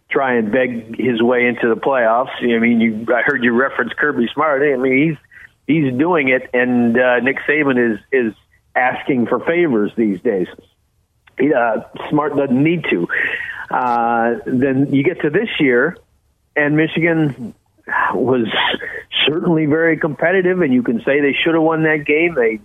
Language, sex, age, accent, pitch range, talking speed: English, male, 50-69, American, 115-150 Hz, 170 wpm